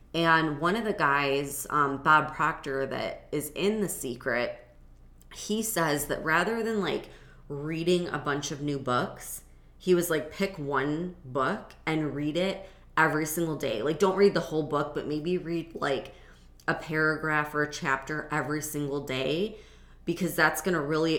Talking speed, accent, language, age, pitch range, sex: 170 wpm, American, English, 20-39, 140-170 Hz, female